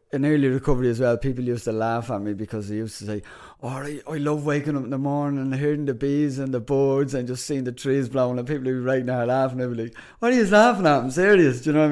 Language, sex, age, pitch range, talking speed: English, male, 30-49, 110-135 Hz, 290 wpm